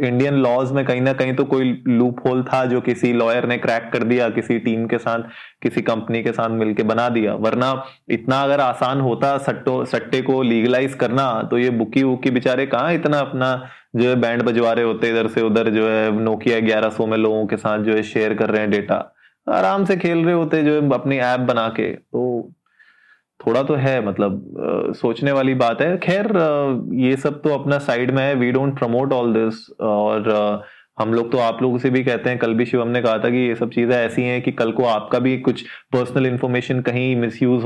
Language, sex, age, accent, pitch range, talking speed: Hindi, male, 20-39, native, 120-140 Hz, 215 wpm